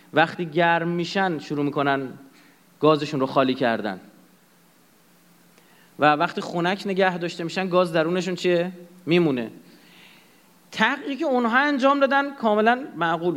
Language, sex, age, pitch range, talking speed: Persian, male, 30-49, 150-205 Hz, 115 wpm